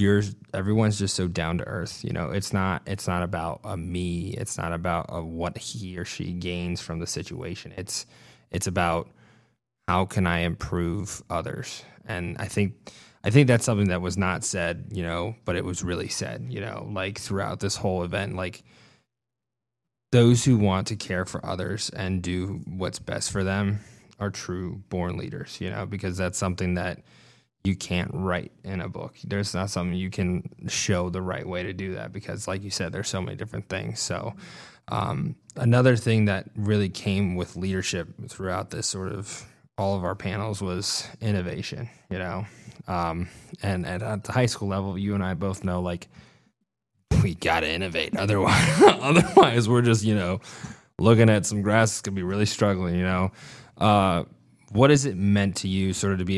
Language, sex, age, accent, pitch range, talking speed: English, male, 20-39, American, 90-105 Hz, 190 wpm